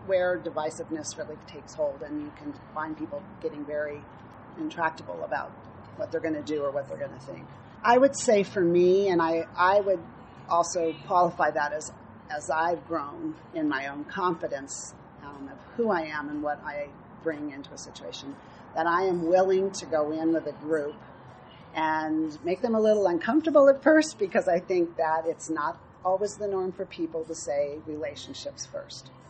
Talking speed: 180 wpm